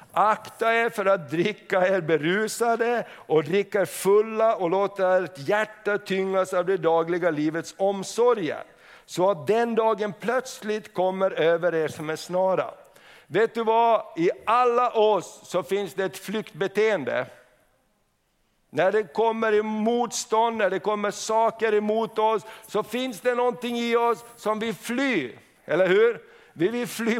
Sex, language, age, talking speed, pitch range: male, Swedish, 60-79, 145 wpm, 195-230 Hz